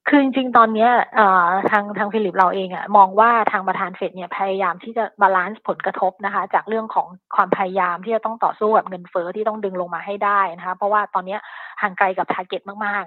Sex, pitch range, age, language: female, 185-210 Hz, 20-39, Thai